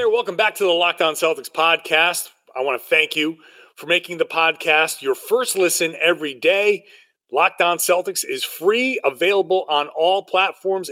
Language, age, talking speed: English, 30-49, 160 wpm